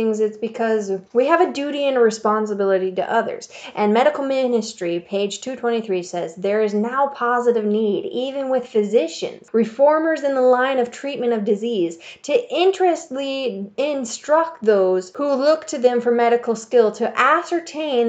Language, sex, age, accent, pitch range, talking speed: English, female, 10-29, American, 215-270 Hz, 155 wpm